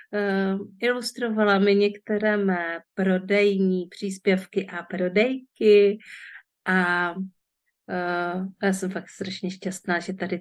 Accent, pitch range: native, 185-200 Hz